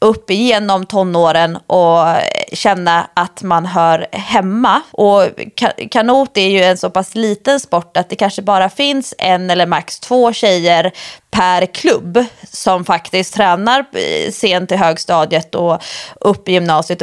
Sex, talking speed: female, 140 wpm